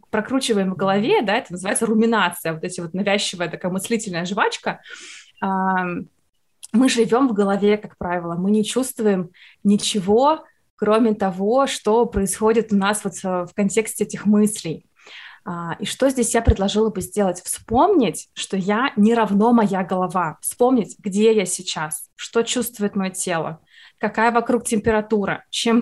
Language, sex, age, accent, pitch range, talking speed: Russian, female, 20-39, native, 195-235 Hz, 140 wpm